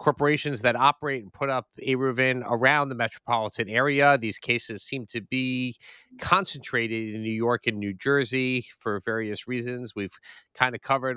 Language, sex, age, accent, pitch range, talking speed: English, male, 30-49, American, 110-140 Hz, 165 wpm